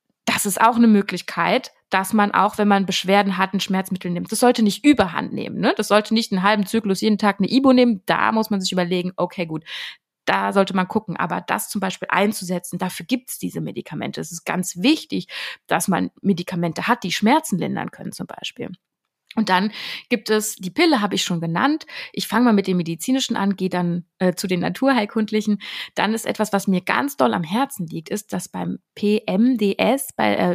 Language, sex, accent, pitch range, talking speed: German, female, German, 180-220 Hz, 205 wpm